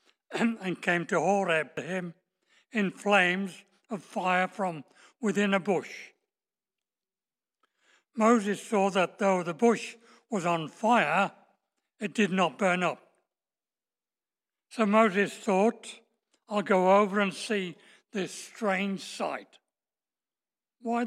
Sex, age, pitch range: male, 60-79, 185-220 Hz